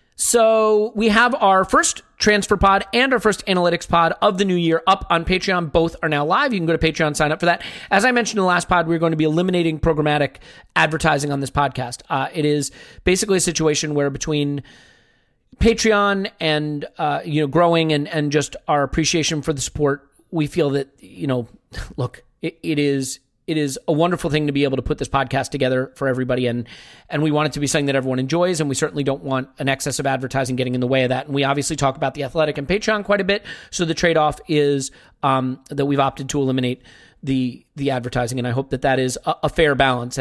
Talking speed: 235 wpm